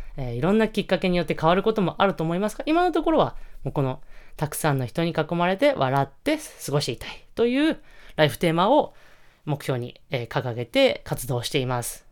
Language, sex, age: Japanese, female, 20-39